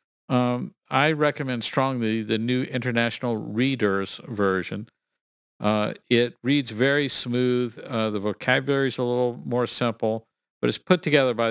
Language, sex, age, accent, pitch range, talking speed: English, male, 50-69, American, 110-140 Hz, 140 wpm